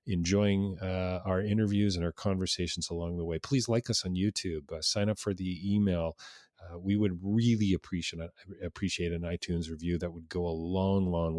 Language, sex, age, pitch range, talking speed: English, male, 40-59, 85-105 Hz, 195 wpm